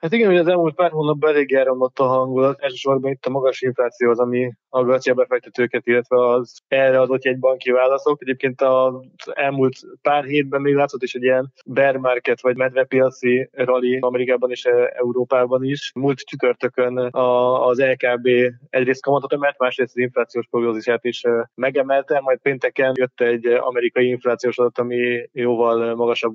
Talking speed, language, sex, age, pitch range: 155 wpm, Hungarian, male, 20-39, 120-130 Hz